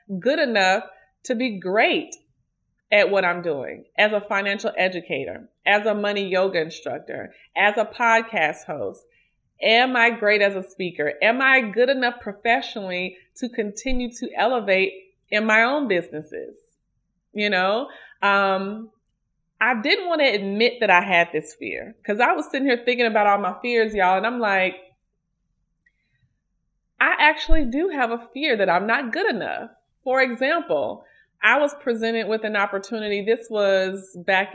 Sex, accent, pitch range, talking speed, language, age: female, American, 185-235 Hz, 155 wpm, English, 30-49